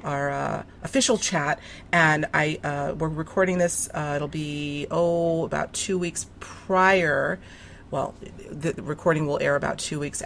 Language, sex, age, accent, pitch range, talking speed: English, female, 40-59, American, 145-165 Hz, 150 wpm